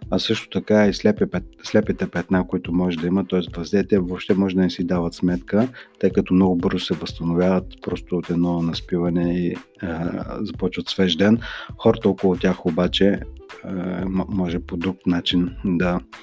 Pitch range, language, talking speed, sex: 90-100 Hz, Bulgarian, 165 wpm, male